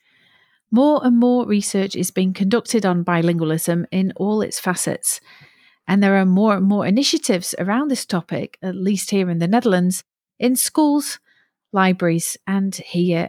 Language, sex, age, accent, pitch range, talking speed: English, female, 40-59, British, 175-230 Hz, 155 wpm